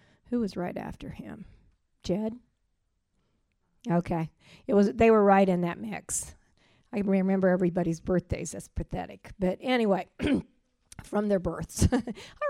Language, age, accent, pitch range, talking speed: English, 50-69, American, 180-200 Hz, 130 wpm